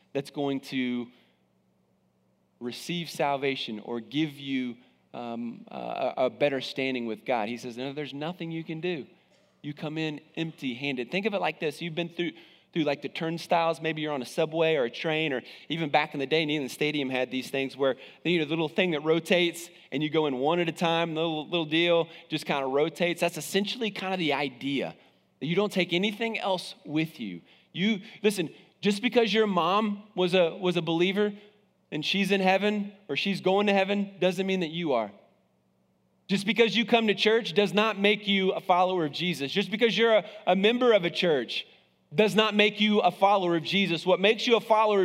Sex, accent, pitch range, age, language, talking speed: male, American, 140-195 Hz, 30-49, English, 210 wpm